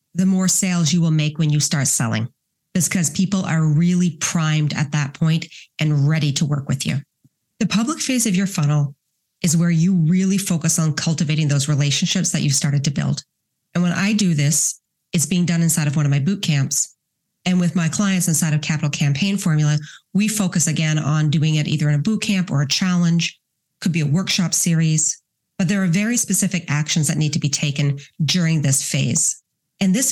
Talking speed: 210 wpm